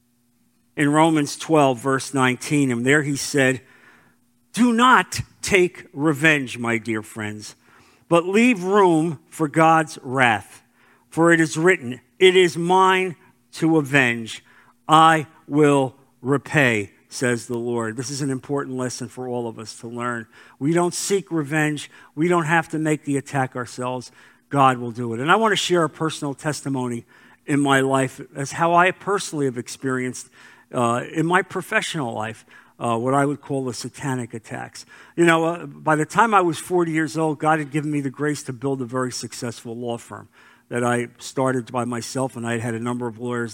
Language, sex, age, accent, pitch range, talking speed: English, male, 50-69, American, 120-155 Hz, 180 wpm